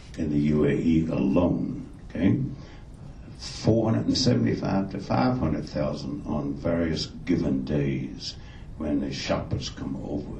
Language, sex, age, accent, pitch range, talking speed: English, male, 70-89, American, 70-90 Hz, 100 wpm